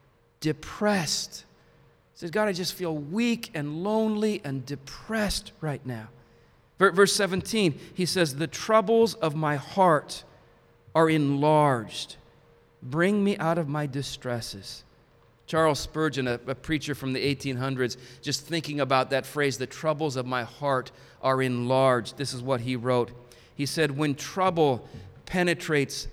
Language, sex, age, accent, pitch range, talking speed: English, male, 40-59, American, 130-190 Hz, 140 wpm